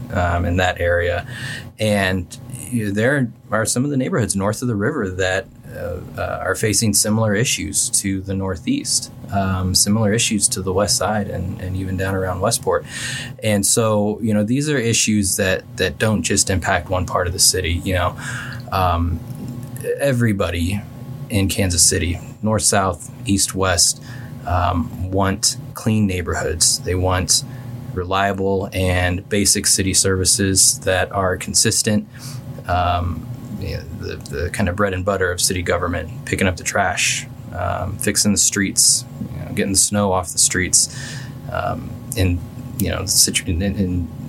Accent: American